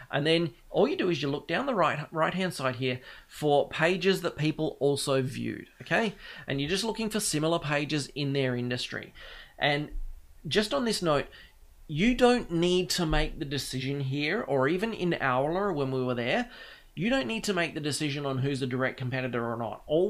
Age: 30-49